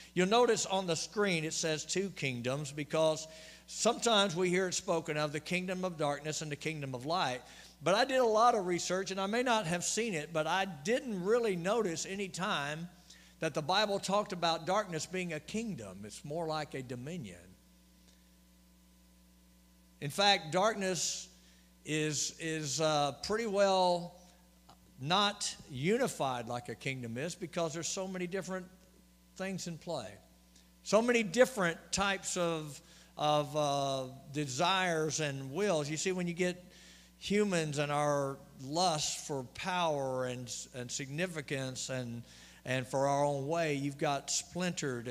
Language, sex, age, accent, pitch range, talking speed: English, male, 60-79, American, 135-185 Hz, 155 wpm